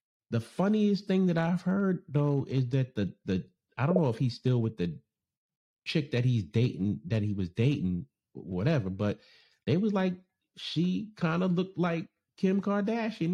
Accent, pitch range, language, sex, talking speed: American, 110-170 Hz, English, male, 175 wpm